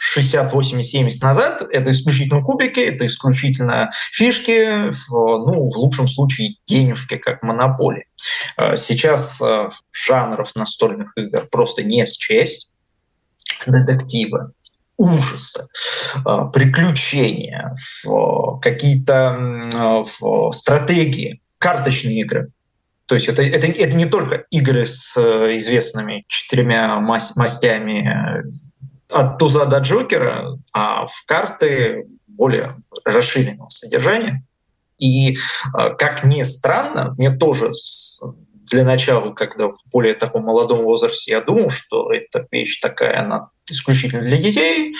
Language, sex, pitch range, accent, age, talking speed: Russian, male, 125-170 Hz, native, 20-39, 105 wpm